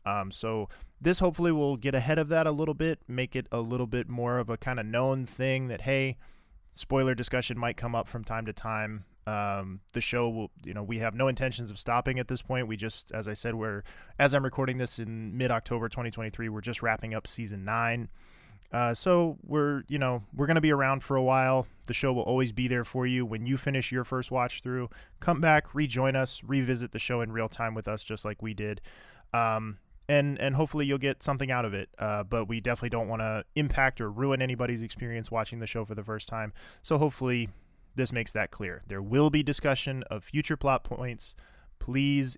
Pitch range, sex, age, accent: 110-135 Hz, male, 20-39, American